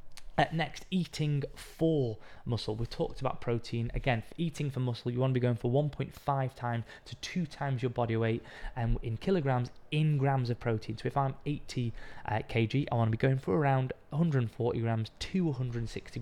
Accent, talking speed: British, 190 wpm